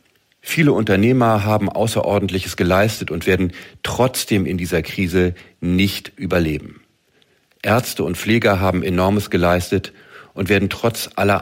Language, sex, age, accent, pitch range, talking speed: English, male, 50-69, German, 95-115 Hz, 120 wpm